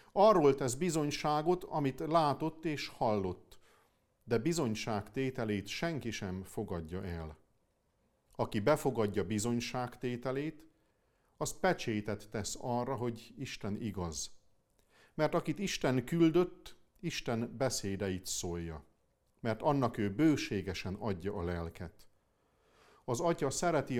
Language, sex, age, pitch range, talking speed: Hungarian, male, 50-69, 100-150 Hz, 100 wpm